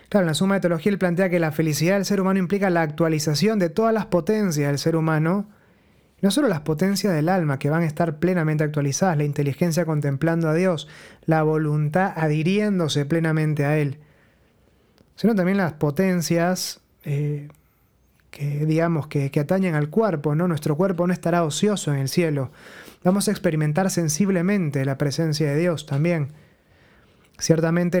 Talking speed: 165 wpm